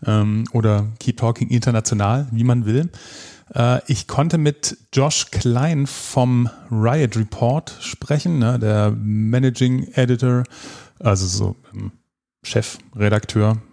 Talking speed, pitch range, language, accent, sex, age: 95 wpm, 105-125 Hz, German, German, male, 30-49